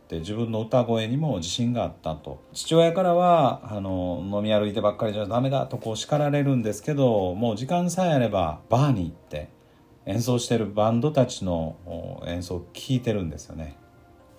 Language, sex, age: Japanese, male, 40-59